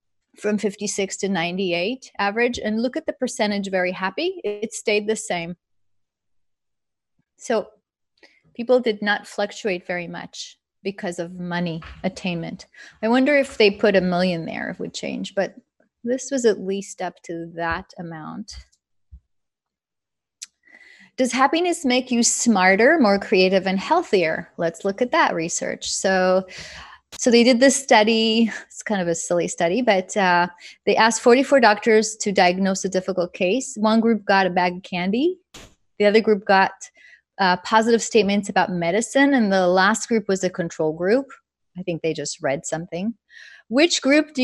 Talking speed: 160 wpm